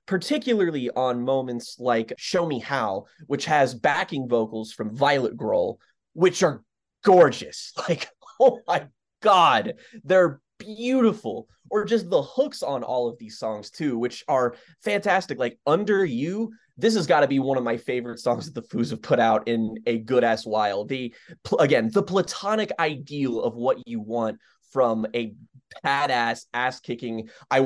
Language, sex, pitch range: English, male, 115-165 Hz